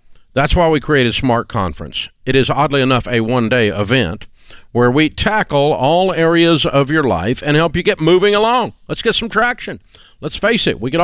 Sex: male